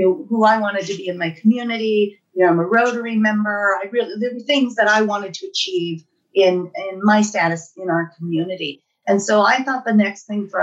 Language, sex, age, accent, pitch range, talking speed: English, female, 40-59, American, 180-220 Hz, 230 wpm